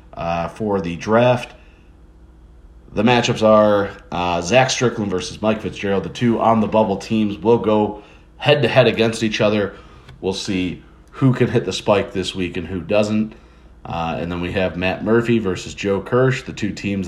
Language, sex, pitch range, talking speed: English, male, 90-115 Hz, 185 wpm